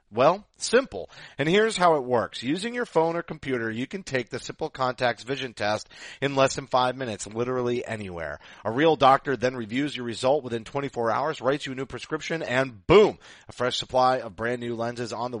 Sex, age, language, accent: male, 40-59, English, American